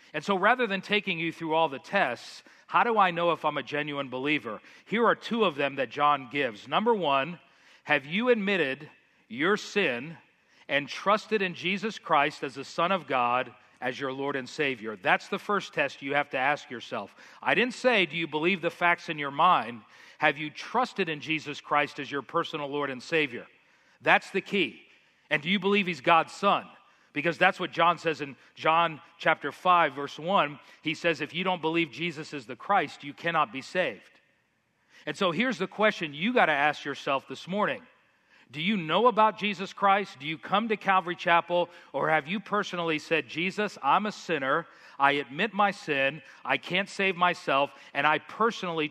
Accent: American